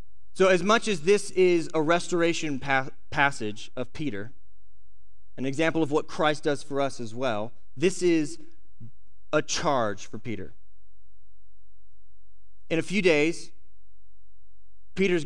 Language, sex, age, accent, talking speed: English, male, 30-49, American, 125 wpm